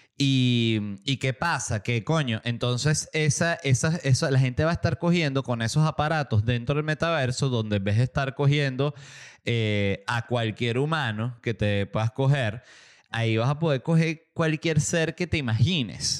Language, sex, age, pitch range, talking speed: Spanish, male, 20-39, 115-145 Hz, 170 wpm